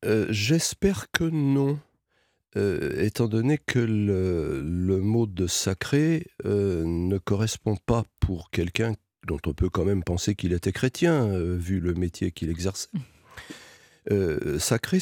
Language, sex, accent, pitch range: French, male, French, 90-120 Hz